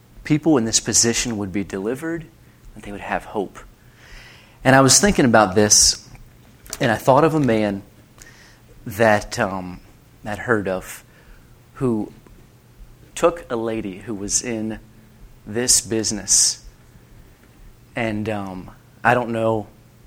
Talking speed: 130 wpm